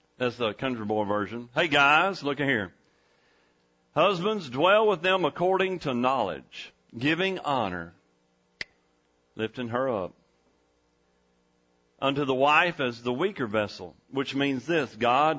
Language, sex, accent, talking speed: English, male, American, 125 wpm